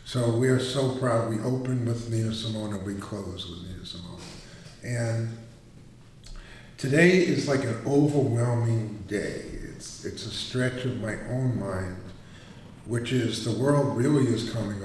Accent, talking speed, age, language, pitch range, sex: American, 155 wpm, 50-69, English, 100-125 Hz, male